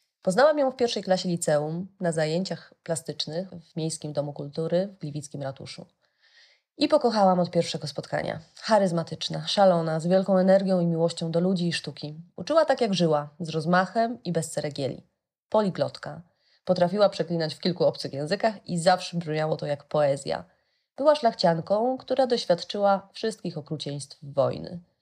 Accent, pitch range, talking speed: native, 155-190 Hz, 145 wpm